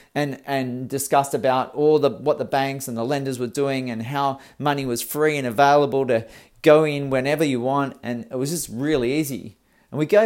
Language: English